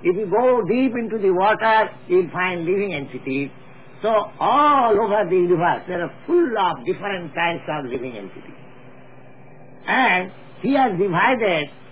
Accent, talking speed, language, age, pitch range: Indian, 150 wpm, English, 60-79, 165-215 Hz